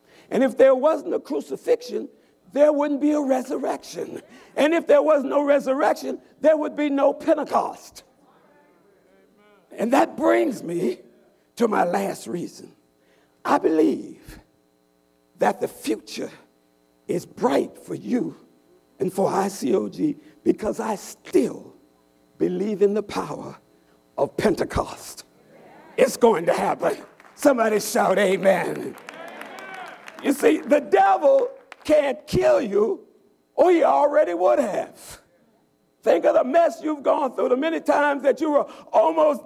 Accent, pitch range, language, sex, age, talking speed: American, 210-315 Hz, English, male, 60-79, 130 wpm